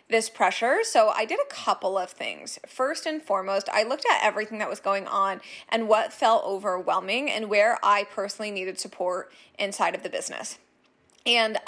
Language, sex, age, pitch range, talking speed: English, female, 20-39, 200-270 Hz, 180 wpm